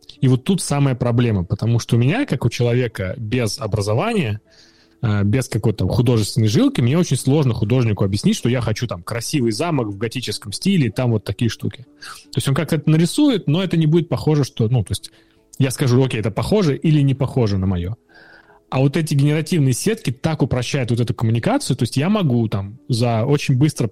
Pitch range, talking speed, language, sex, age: 110-145 Hz, 205 wpm, Russian, male, 20-39